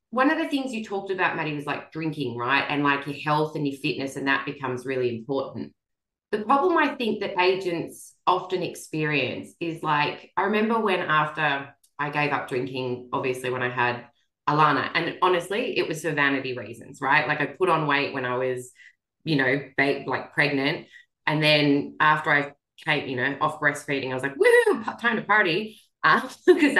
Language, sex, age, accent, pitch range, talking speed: English, female, 20-39, Australian, 140-185 Hz, 190 wpm